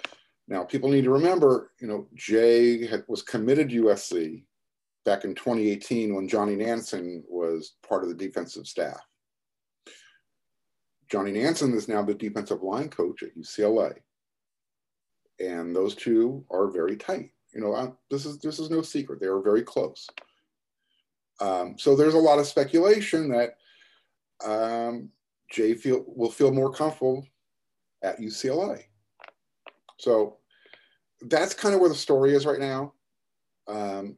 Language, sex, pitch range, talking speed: English, male, 105-160 Hz, 140 wpm